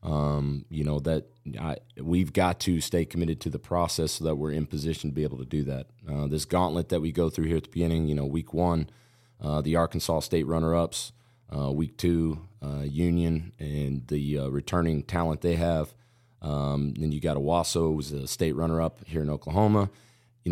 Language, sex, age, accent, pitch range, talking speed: English, male, 30-49, American, 75-95 Hz, 200 wpm